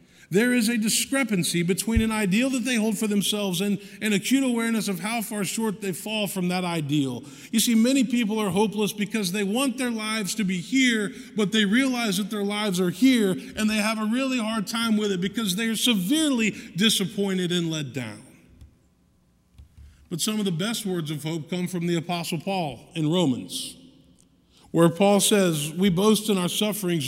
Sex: male